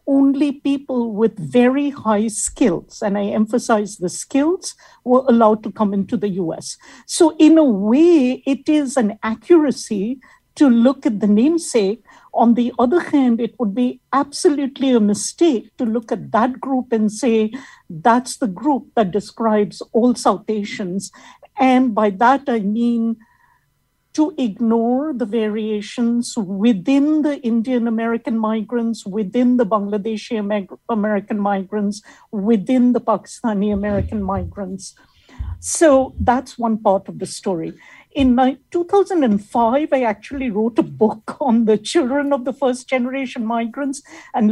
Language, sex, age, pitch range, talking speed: English, female, 60-79, 215-270 Hz, 140 wpm